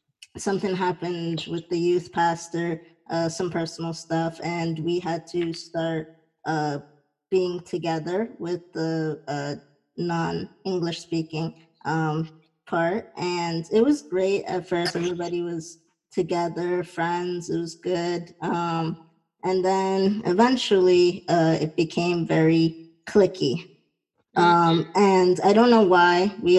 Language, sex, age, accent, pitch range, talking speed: English, male, 20-39, American, 160-180 Hz, 120 wpm